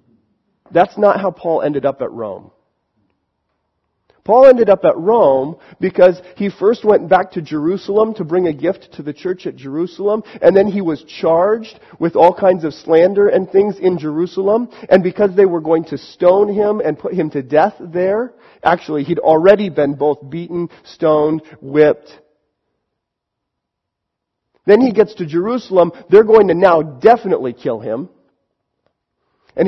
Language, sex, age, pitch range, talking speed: English, male, 40-59, 160-215 Hz, 160 wpm